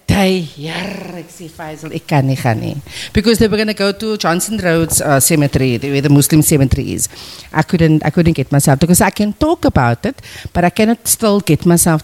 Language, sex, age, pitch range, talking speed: English, female, 50-69, 150-235 Hz, 175 wpm